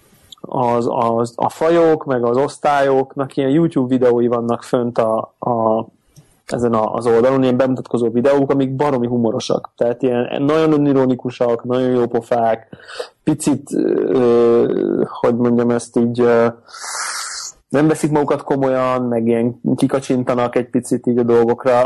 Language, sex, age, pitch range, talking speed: Hungarian, male, 30-49, 120-135 Hz, 135 wpm